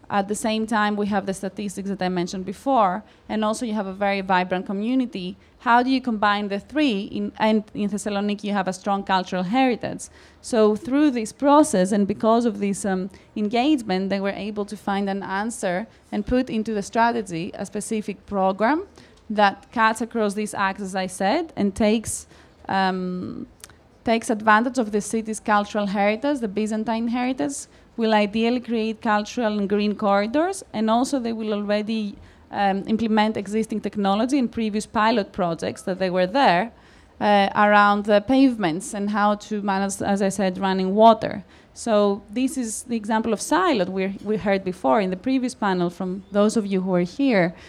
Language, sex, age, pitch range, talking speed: French, female, 20-39, 195-225 Hz, 175 wpm